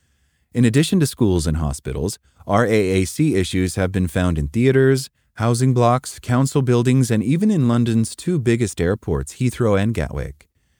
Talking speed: 150 wpm